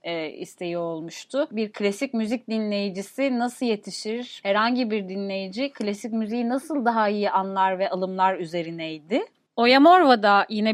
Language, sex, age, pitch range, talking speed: Turkish, female, 30-49, 200-275 Hz, 125 wpm